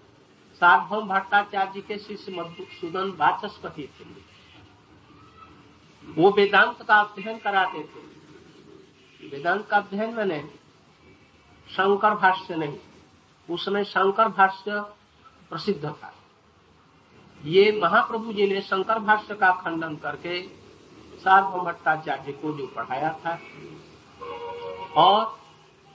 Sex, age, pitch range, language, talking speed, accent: male, 60-79, 170-215 Hz, Hindi, 90 wpm, native